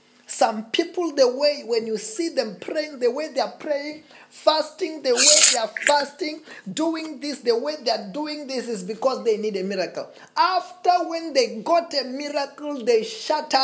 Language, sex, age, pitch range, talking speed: English, male, 30-49, 210-285 Hz, 185 wpm